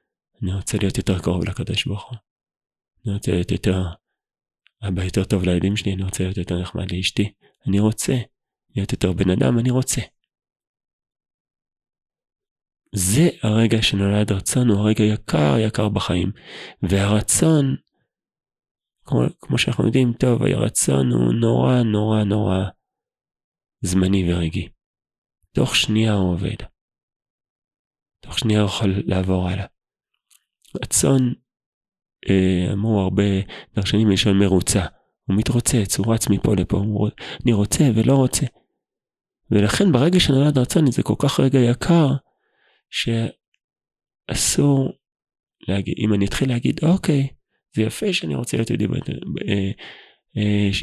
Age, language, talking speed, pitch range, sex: 30-49, Hebrew, 125 wpm, 95-120 Hz, male